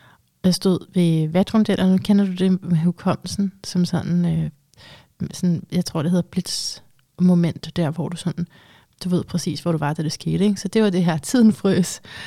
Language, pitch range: Danish, 165-185 Hz